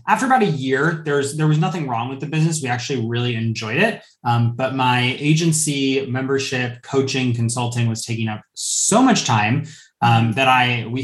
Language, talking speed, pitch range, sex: English, 185 wpm, 115-140 Hz, male